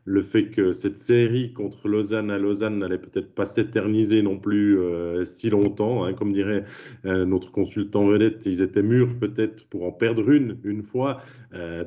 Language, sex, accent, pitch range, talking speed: French, male, French, 100-115 Hz, 180 wpm